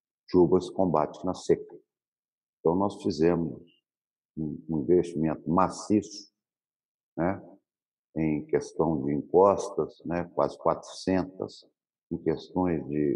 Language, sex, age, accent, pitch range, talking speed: Portuguese, male, 60-79, Brazilian, 80-100 Hz, 95 wpm